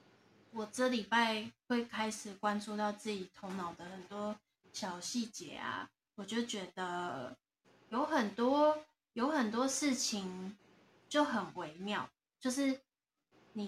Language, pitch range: Chinese, 200-250 Hz